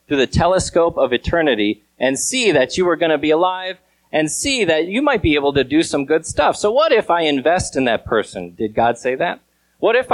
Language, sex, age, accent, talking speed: English, male, 30-49, American, 235 wpm